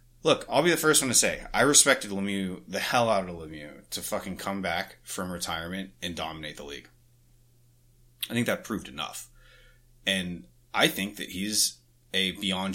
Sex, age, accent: male, 30-49, American